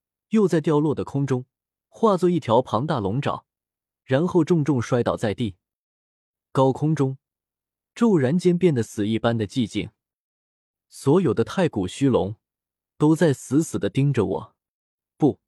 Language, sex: Chinese, male